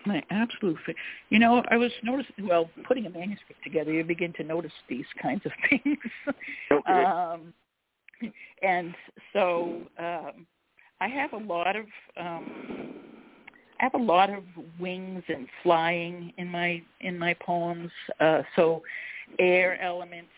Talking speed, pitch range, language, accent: 135 wpm, 170-225 Hz, English, American